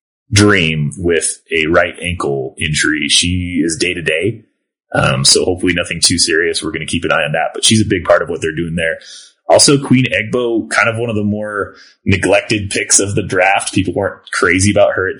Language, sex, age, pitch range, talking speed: English, male, 30-49, 85-110 Hz, 210 wpm